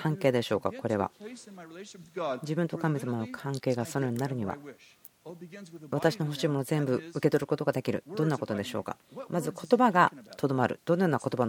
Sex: female